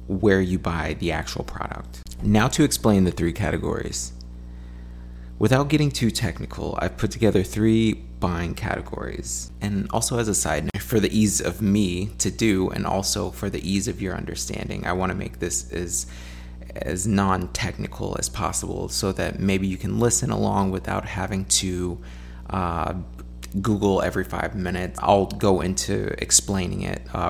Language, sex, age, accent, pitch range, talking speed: English, male, 30-49, American, 75-100 Hz, 160 wpm